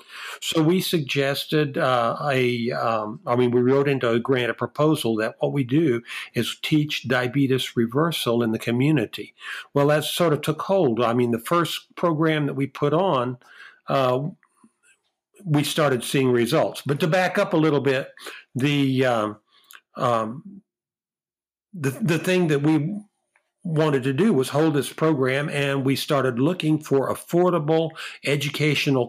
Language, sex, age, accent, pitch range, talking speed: English, male, 50-69, American, 125-160 Hz, 155 wpm